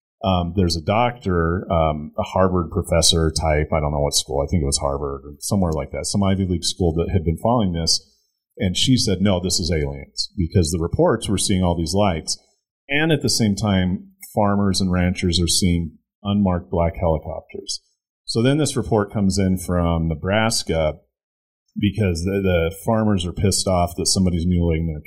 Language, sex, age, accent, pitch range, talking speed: English, male, 30-49, American, 80-100 Hz, 190 wpm